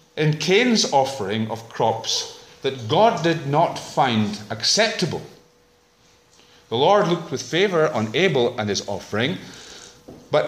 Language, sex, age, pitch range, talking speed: English, male, 40-59, 110-160 Hz, 125 wpm